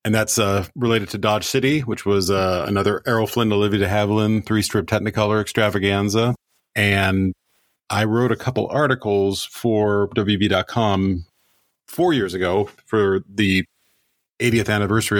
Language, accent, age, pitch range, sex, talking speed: English, American, 40-59, 95-110 Hz, male, 140 wpm